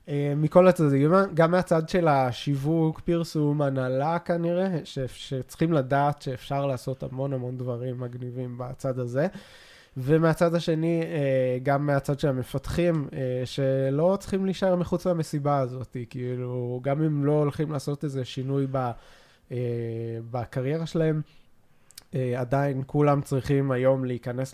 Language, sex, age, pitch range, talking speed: Hebrew, male, 20-39, 130-160 Hz, 115 wpm